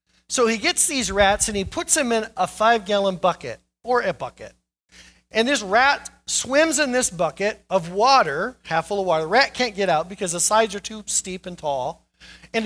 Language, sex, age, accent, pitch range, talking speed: English, male, 40-59, American, 175-255 Hz, 205 wpm